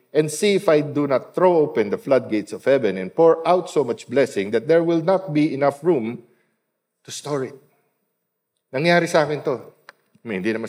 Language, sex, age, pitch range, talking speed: Filipino, male, 50-69, 110-165 Hz, 190 wpm